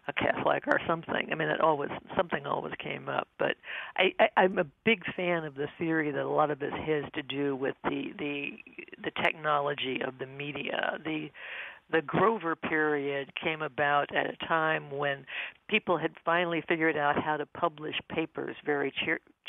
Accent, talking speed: American, 180 wpm